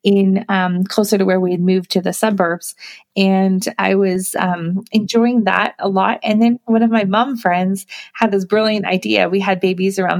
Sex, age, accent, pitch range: female, 30-49, American, 190-225 Hz